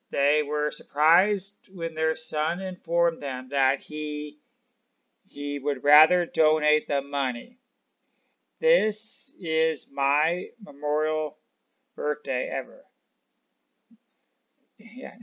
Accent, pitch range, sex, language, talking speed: American, 140-200 Hz, male, English, 90 wpm